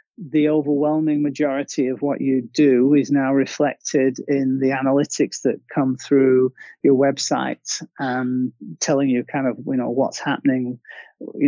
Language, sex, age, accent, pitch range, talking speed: English, male, 30-49, British, 130-150 Hz, 145 wpm